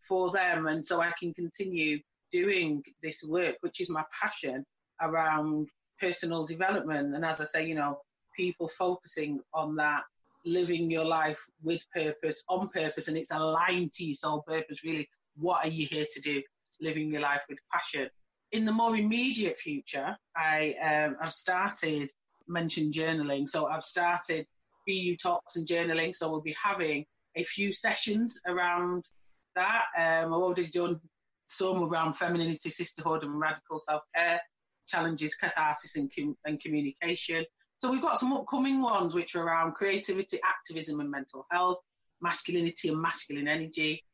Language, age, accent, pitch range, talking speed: English, 30-49, British, 155-180 Hz, 155 wpm